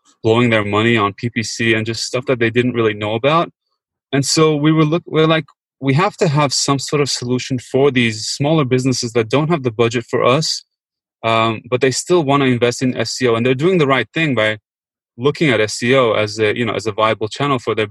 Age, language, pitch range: 20-39, English, 120-145 Hz